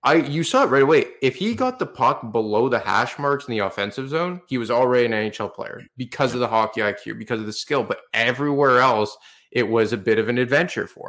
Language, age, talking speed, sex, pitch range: English, 20-39, 245 wpm, male, 110-140 Hz